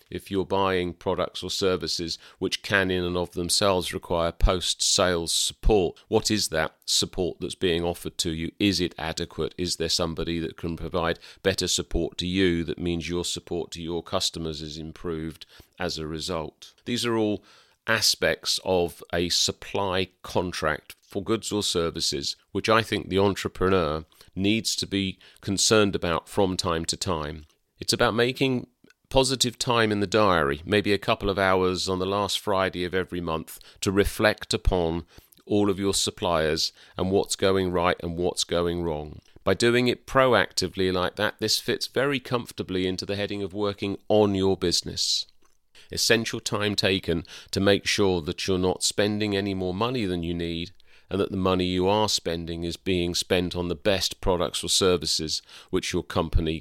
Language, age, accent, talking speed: English, 40-59, British, 175 wpm